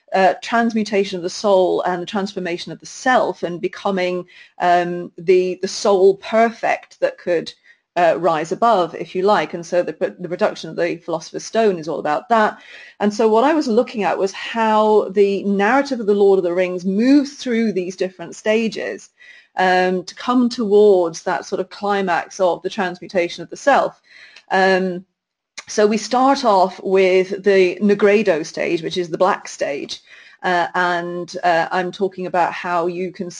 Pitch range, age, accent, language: 175-205 Hz, 30-49, British, English